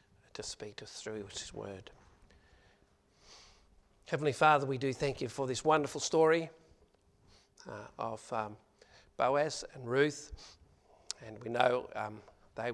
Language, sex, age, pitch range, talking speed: English, male, 50-69, 110-150 Hz, 130 wpm